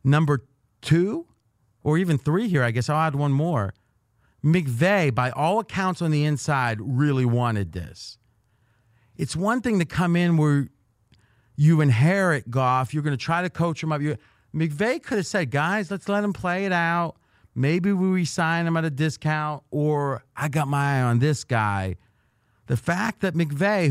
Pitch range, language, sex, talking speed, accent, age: 120-175 Hz, English, male, 175 wpm, American, 40-59